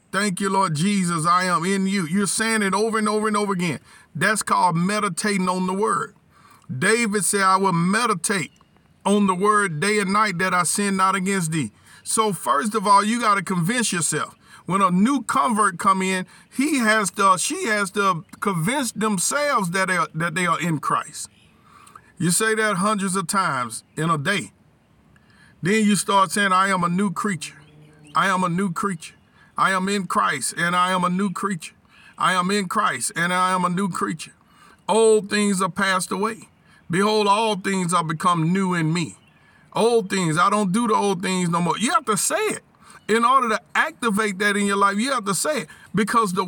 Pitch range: 185-215 Hz